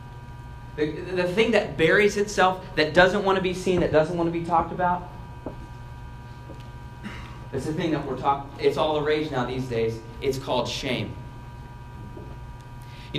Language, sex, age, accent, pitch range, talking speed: English, male, 30-49, American, 125-180 Hz, 165 wpm